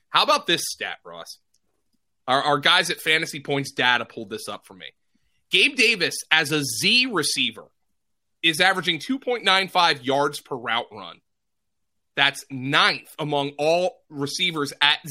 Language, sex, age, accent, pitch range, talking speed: English, male, 30-49, American, 135-180 Hz, 145 wpm